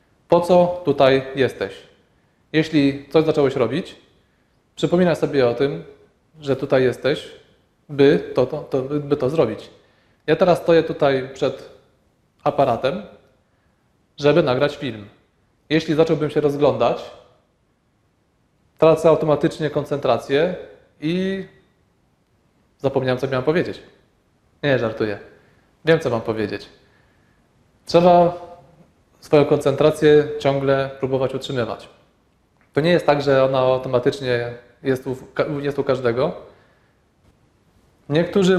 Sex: male